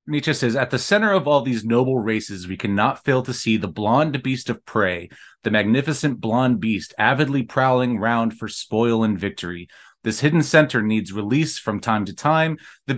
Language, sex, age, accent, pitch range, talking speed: English, male, 30-49, American, 110-135 Hz, 190 wpm